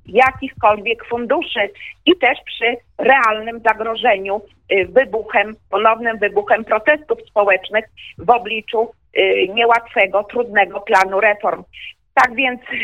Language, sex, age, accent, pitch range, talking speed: Polish, female, 40-59, native, 210-260 Hz, 95 wpm